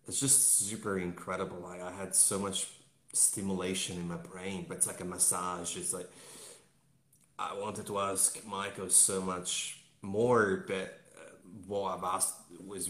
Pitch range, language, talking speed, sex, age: 90-100 Hz, English, 155 wpm, male, 30-49